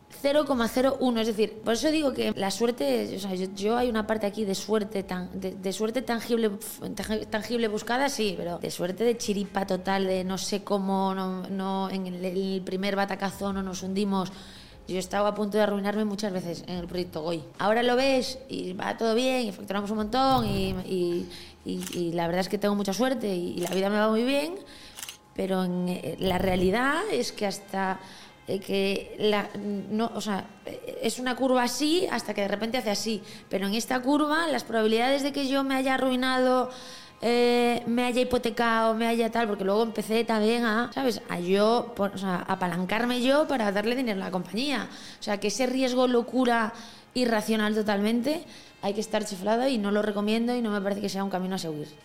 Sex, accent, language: female, Spanish, Spanish